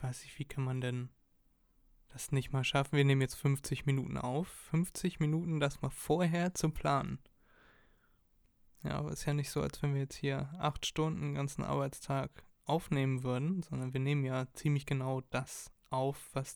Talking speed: 185 wpm